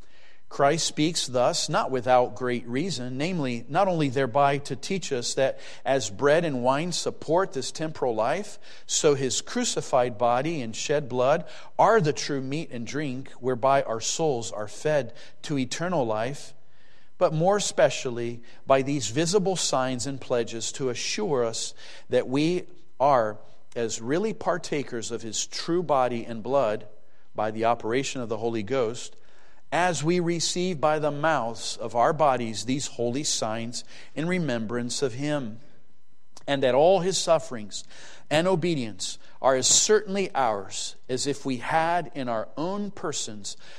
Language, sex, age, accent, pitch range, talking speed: English, male, 40-59, American, 120-160 Hz, 150 wpm